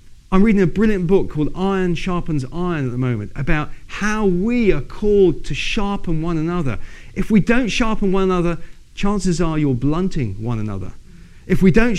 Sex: male